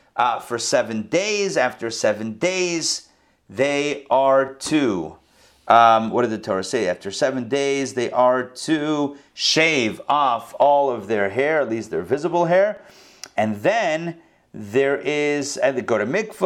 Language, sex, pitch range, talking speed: English, male, 110-150 Hz, 155 wpm